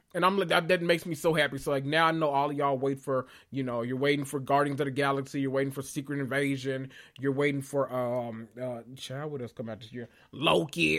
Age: 20-39